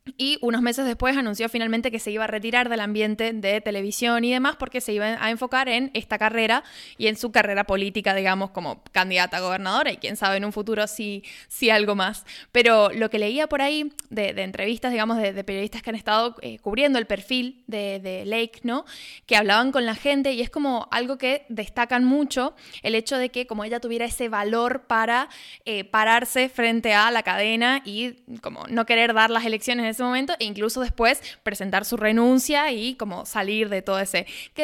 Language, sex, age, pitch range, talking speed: Spanish, female, 10-29, 215-255 Hz, 210 wpm